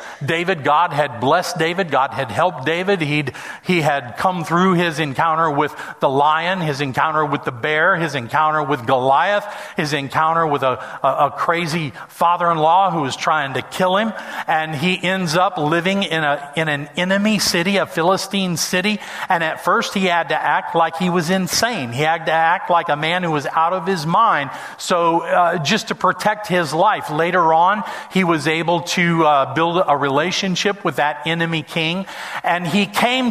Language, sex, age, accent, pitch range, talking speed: English, male, 40-59, American, 150-185 Hz, 185 wpm